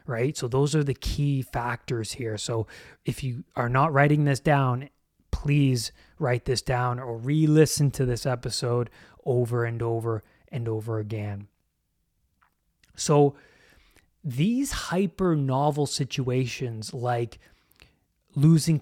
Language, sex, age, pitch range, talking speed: English, male, 20-39, 125-165 Hz, 125 wpm